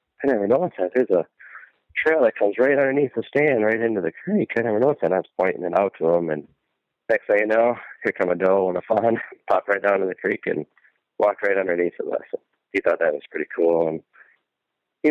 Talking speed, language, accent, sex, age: 240 wpm, English, American, male, 30-49